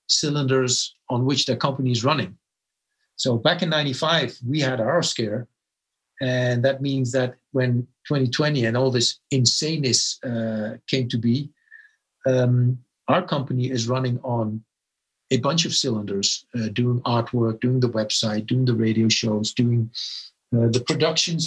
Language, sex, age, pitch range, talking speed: English, male, 50-69, 120-150 Hz, 150 wpm